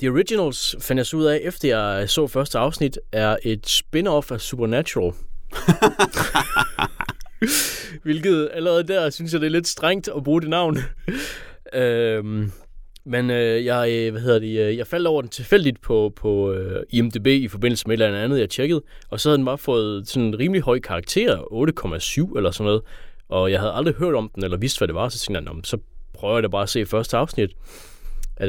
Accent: native